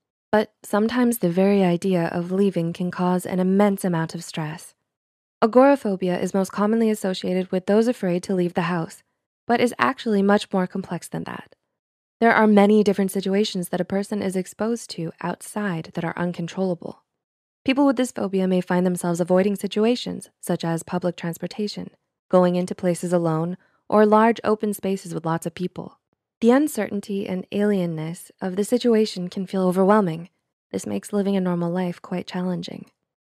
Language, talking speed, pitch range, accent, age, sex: English, 165 wpm, 175-210 Hz, American, 20-39, female